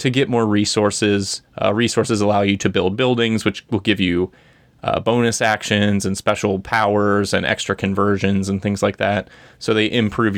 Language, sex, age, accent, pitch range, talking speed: English, male, 30-49, American, 105-120 Hz, 180 wpm